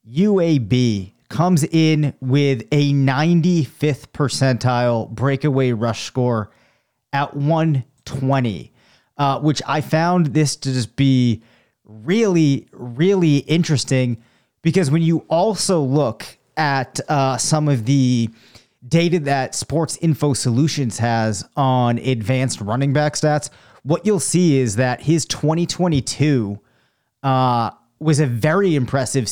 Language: English